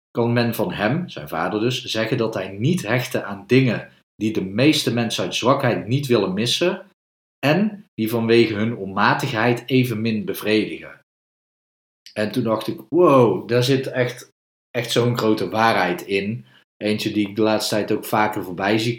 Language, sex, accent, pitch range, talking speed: Dutch, male, Dutch, 100-125 Hz, 170 wpm